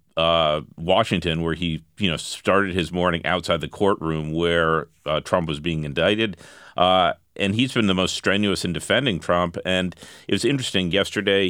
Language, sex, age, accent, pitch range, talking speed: English, male, 40-59, American, 85-95 Hz, 170 wpm